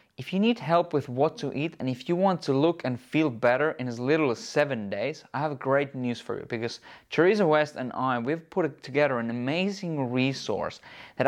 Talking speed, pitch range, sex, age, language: 220 wpm, 125-160 Hz, male, 20-39, English